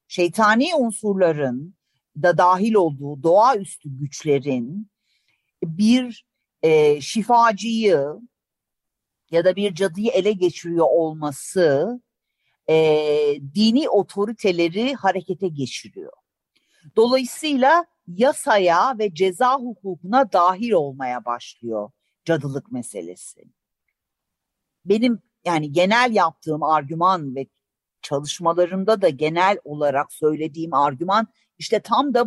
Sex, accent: female, native